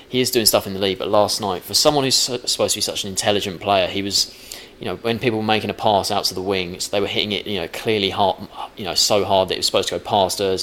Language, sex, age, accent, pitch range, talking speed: English, male, 20-39, British, 90-100 Hz, 310 wpm